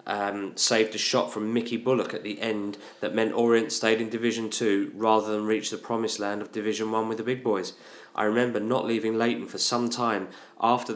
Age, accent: 20-39, British